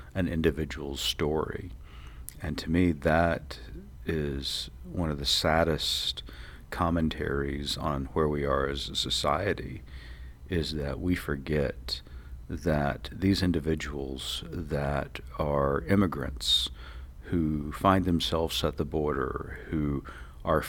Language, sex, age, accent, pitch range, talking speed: English, male, 50-69, American, 65-80 Hz, 110 wpm